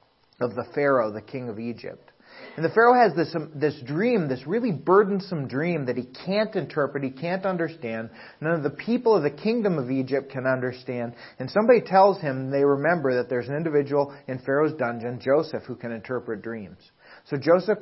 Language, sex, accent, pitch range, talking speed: English, male, American, 125-170 Hz, 190 wpm